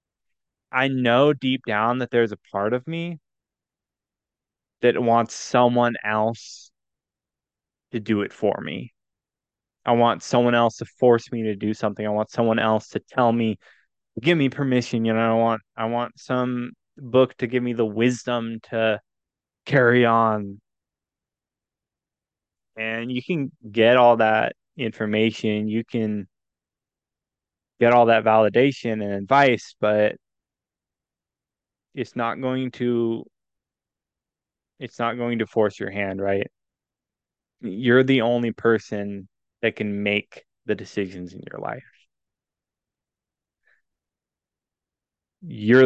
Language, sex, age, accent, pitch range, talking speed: English, male, 20-39, American, 105-120 Hz, 125 wpm